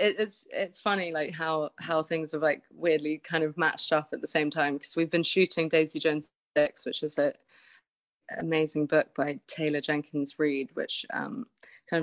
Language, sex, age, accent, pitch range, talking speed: English, female, 20-39, British, 150-170 Hz, 185 wpm